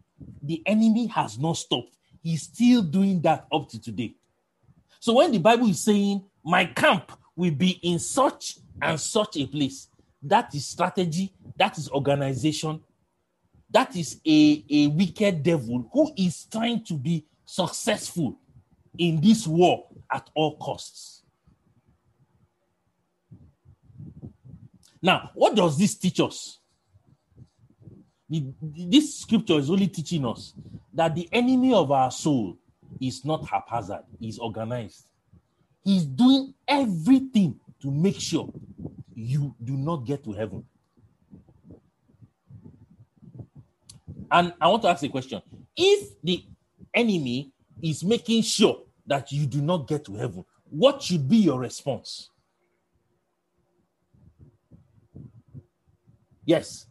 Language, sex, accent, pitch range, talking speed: English, male, Nigerian, 135-195 Hz, 120 wpm